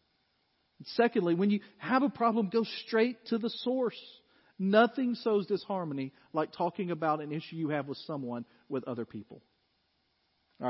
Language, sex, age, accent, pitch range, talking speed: English, male, 40-59, American, 170-235 Hz, 150 wpm